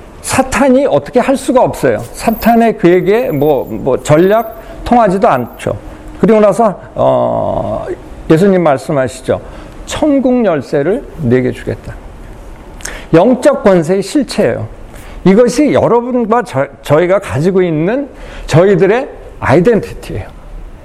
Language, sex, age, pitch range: Korean, male, 50-69, 160-255 Hz